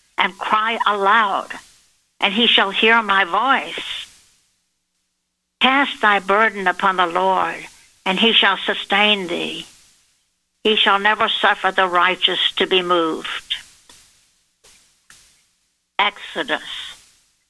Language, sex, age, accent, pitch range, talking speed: English, female, 60-79, American, 185-230 Hz, 105 wpm